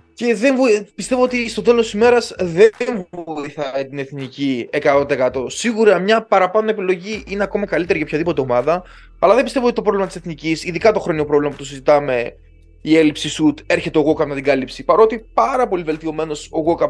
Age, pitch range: 20-39, 150-220 Hz